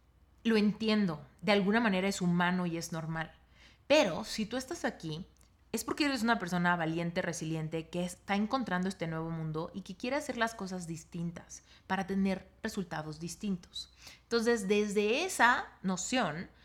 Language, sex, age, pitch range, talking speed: Spanish, female, 30-49, 170-225 Hz, 155 wpm